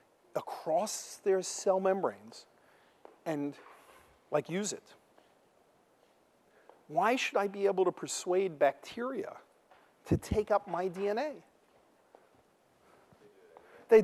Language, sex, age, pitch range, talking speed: English, male, 40-59, 135-190 Hz, 95 wpm